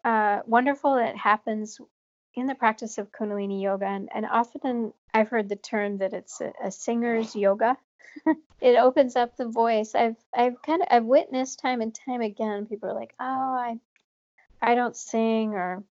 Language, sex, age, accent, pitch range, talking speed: Portuguese, female, 40-59, American, 190-225 Hz, 185 wpm